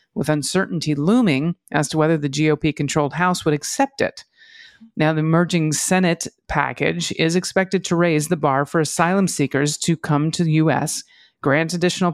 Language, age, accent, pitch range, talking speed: English, 40-59, American, 150-180 Hz, 165 wpm